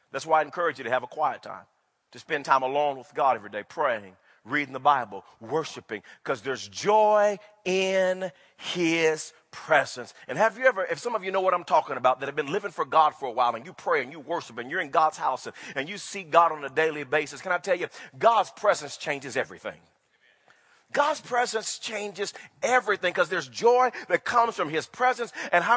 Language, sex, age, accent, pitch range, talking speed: English, male, 40-59, American, 175-250 Hz, 215 wpm